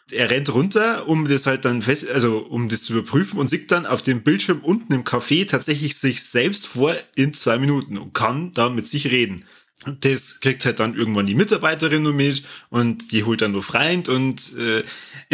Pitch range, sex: 115-145 Hz, male